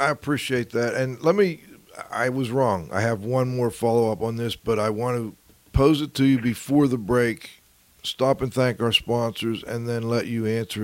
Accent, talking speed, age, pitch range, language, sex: American, 205 wpm, 50-69, 115-140 Hz, English, male